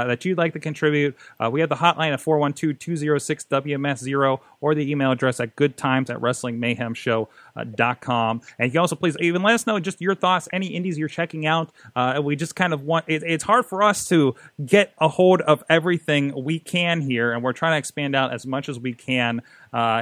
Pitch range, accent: 130-165 Hz, American